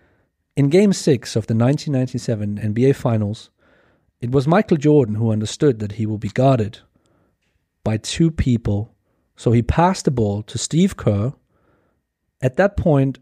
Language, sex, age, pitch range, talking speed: English, male, 40-59, 105-140 Hz, 150 wpm